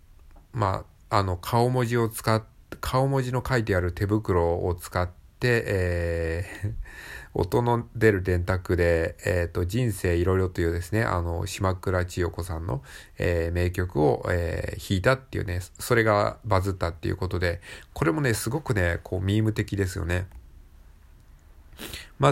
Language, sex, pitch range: Japanese, male, 85-110 Hz